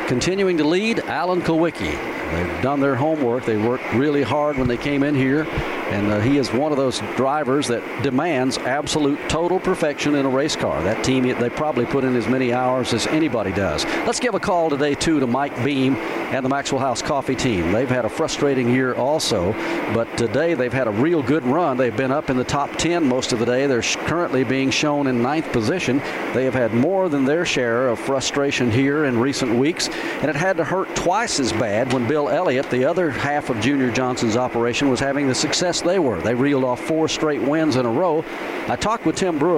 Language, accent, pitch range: English, American, 125-150 Hz